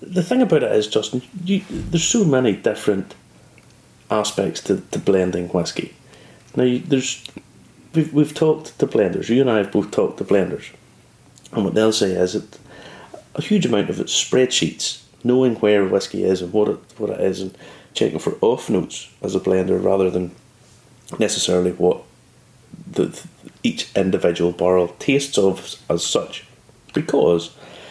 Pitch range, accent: 95-135 Hz, British